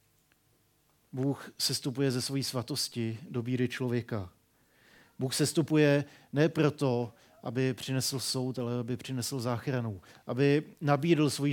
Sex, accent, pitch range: male, native, 120-140 Hz